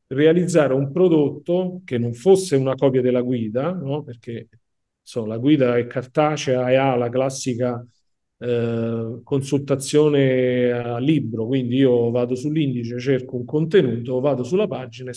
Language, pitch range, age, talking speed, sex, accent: Italian, 120-140 Hz, 40-59, 130 wpm, male, native